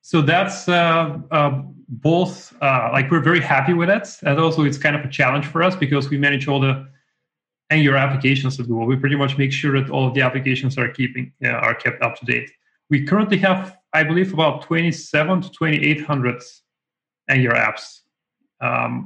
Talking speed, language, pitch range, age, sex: 200 wpm, English, 130-150 Hz, 30-49, male